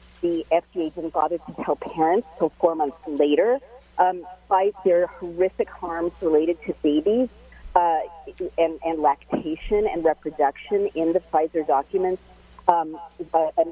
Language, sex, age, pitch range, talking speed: English, female, 40-59, 155-185 Hz, 135 wpm